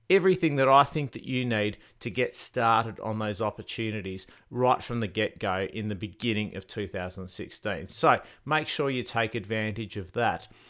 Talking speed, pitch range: 175 wpm, 105-150 Hz